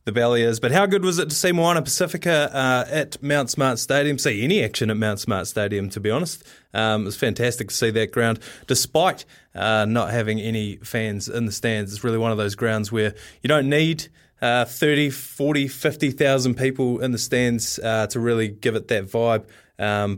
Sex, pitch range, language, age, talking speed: male, 110-150 Hz, English, 20-39, 205 wpm